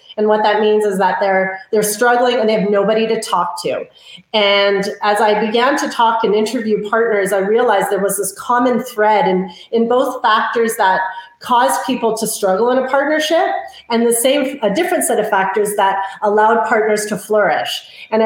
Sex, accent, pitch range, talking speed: female, American, 195-230 Hz, 190 wpm